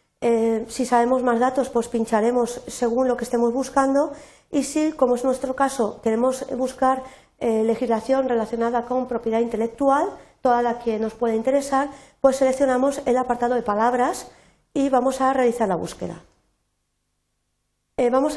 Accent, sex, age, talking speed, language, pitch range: Spanish, female, 40-59, 140 wpm, Spanish, 235-270 Hz